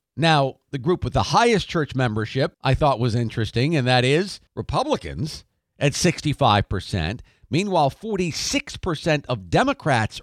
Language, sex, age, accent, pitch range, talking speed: English, male, 50-69, American, 125-170 Hz, 140 wpm